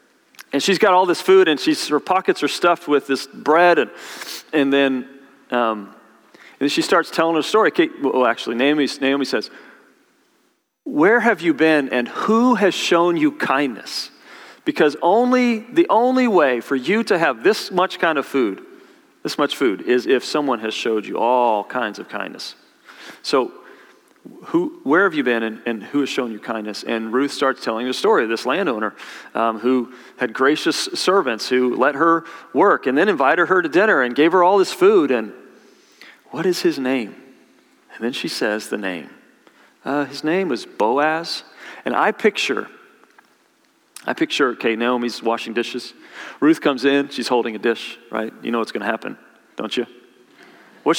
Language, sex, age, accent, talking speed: English, male, 40-59, American, 180 wpm